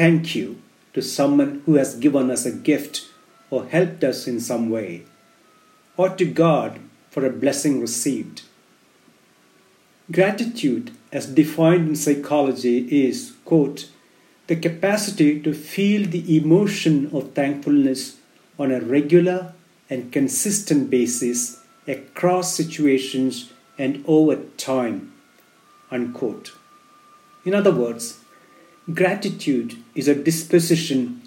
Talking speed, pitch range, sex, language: 110 wpm, 135-185 Hz, male, English